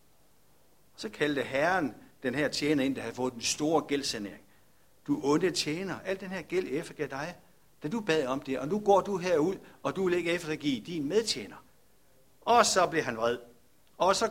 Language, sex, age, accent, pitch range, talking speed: Danish, male, 60-79, native, 155-215 Hz, 195 wpm